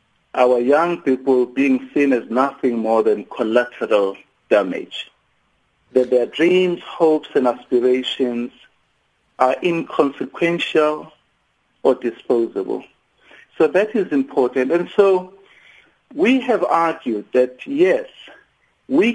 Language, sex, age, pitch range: English, male, 60-79, 130-220 Hz